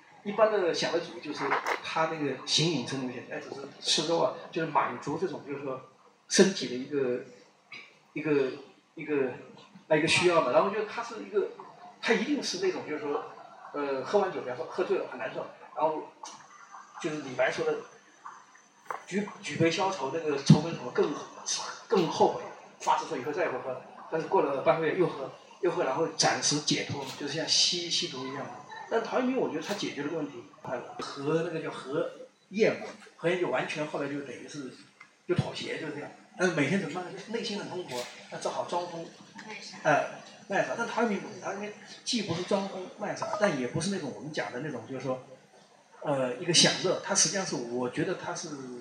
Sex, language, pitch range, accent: male, Chinese, 145-205 Hz, native